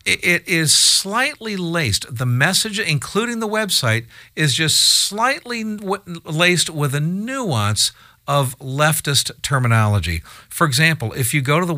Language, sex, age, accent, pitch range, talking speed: English, male, 50-69, American, 115-160 Hz, 135 wpm